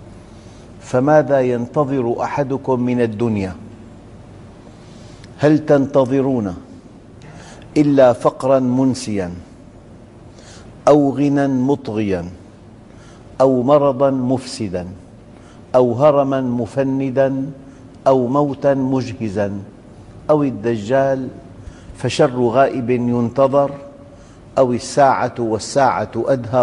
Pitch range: 115-135 Hz